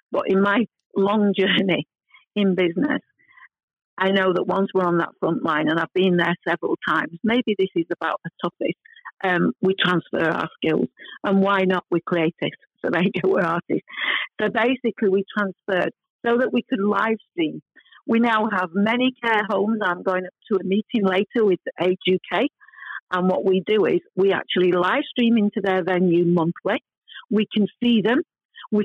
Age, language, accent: 50-69, English, British